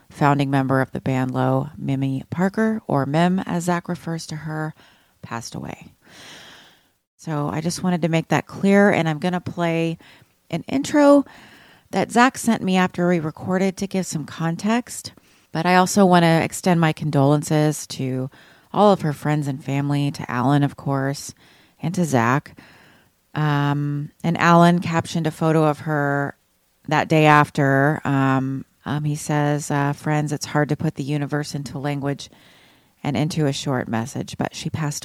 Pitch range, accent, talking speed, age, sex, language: 140-170 Hz, American, 170 wpm, 30-49, female, English